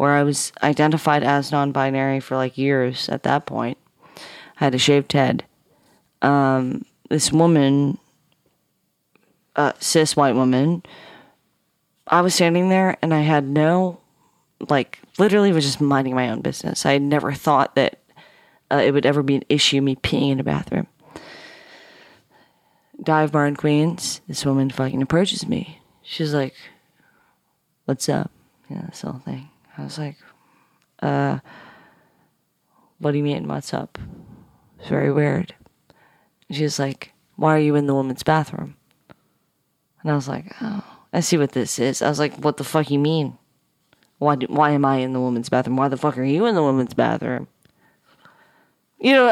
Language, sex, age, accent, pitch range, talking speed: English, female, 30-49, American, 135-165 Hz, 170 wpm